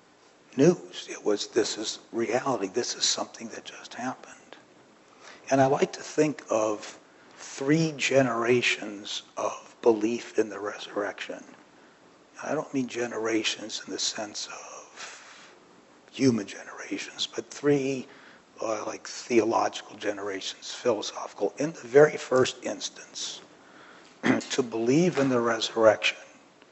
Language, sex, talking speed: English, male, 115 wpm